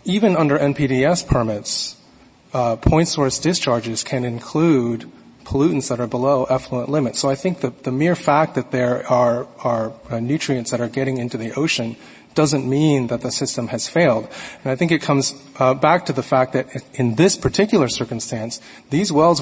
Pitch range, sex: 125-155 Hz, male